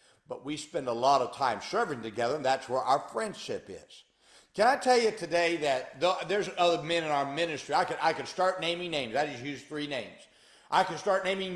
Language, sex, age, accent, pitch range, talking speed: English, male, 60-79, American, 160-235 Hz, 230 wpm